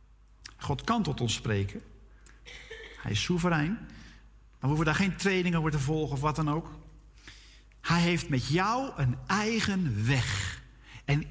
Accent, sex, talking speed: Dutch, male, 155 wpm